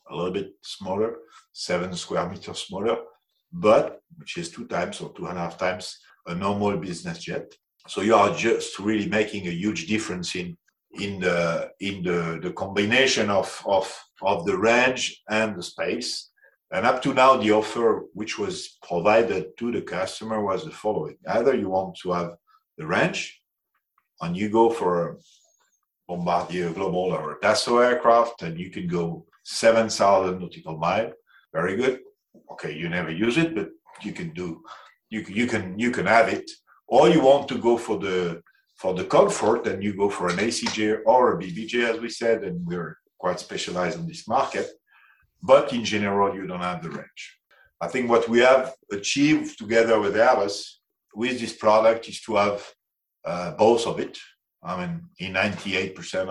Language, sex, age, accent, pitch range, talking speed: English, male, 50-69, French, 95-135 Hz, 175 wpm